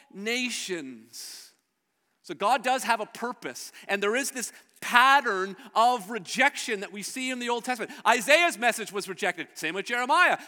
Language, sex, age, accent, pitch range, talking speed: English, male, 40-59, American, 210-280 Hz, 160 wpm